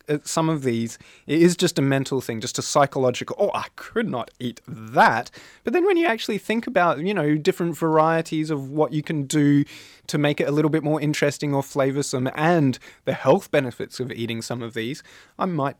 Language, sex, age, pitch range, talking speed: English, male, 20-39, 120-160 Hz, 210 wpm